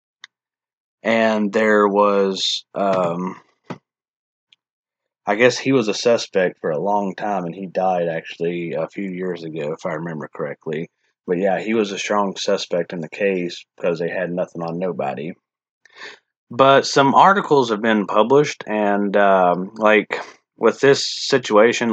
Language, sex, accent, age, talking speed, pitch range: English, male, American, 30-49, 150 wpm, 95-110 Hz